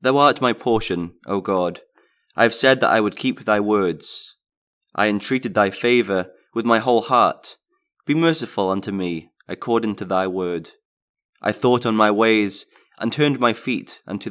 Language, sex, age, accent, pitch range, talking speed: English, male, 20-39, British, 100-125 Hz, 170 wpm